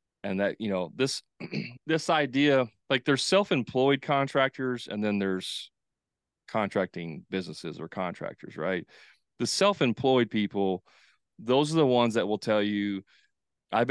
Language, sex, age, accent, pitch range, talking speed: English, male, 30-49, American, 100-120 Hz, 135 wpm